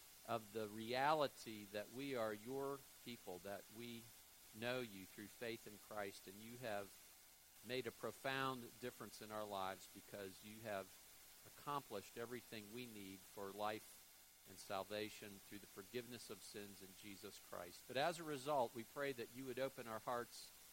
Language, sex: English, male